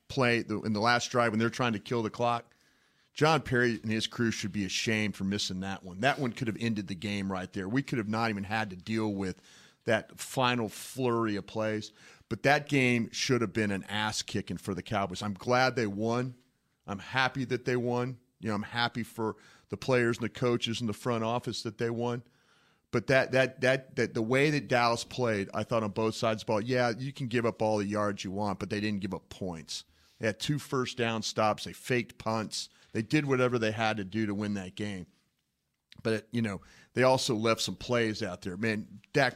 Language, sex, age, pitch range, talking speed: English, male, 40-59, 105-125 Hz, 230 wpm